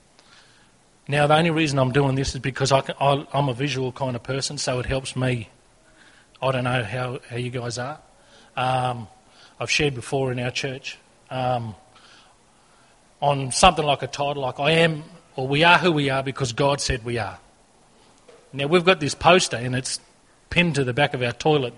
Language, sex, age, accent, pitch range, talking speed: English, male, 30-49, Australian, 125-155 Hz, 185 wpm